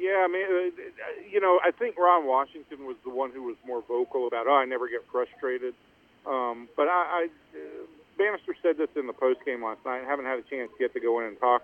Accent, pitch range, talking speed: American, 120-185 Hz, 230 wpm